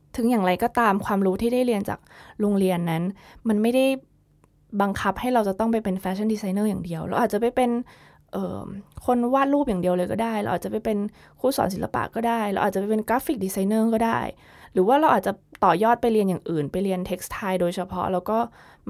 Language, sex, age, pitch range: Thai, female, 20-39, 185-230 Hz